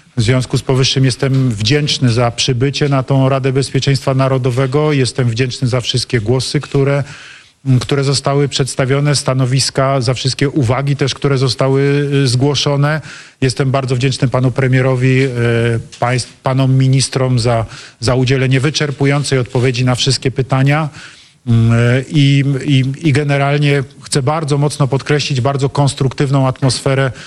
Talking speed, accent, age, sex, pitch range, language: 120 wpm, native, 40-59, male, 130-140 Hz, Polish